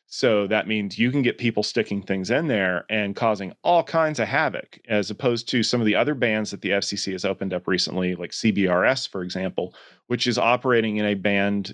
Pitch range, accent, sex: 95-115 Hz, American, male